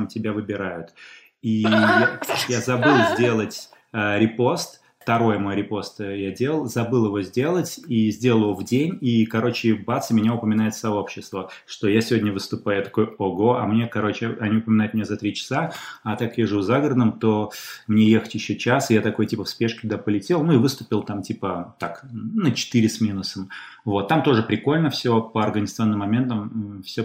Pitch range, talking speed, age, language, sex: 105-120 Hz, 180 wpm, 20-39, Russian, male